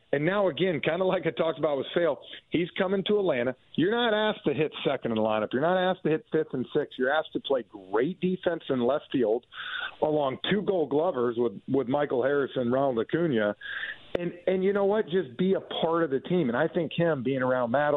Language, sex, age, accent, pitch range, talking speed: English, male, 50-69, American, 130-170 Hz, 235 wpm